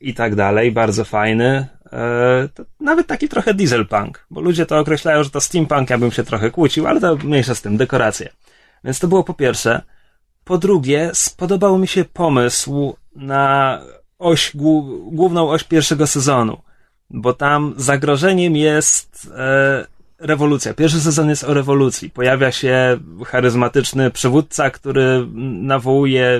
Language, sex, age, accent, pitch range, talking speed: Polish, male, 20-39, native, 130-165 Hz, 135 wpm